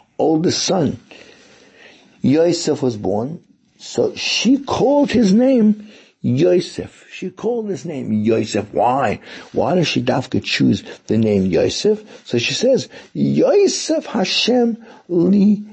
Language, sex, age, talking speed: English, male, 60-79, 120 wpm